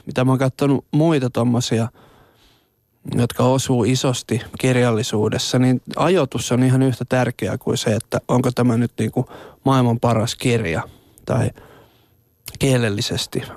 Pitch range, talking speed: 120-135 Hz, 125 wpm